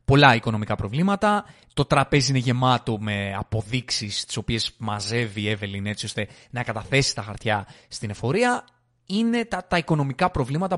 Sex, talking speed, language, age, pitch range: male, 150 wpm, Greek, 20-39, 115-160 Hz